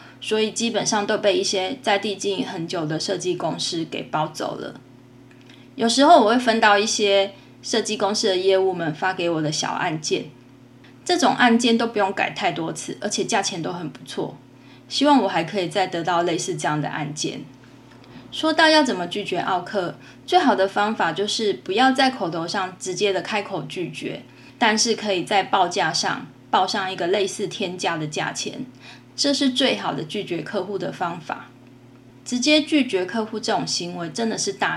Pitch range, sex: 165-220 Hz, female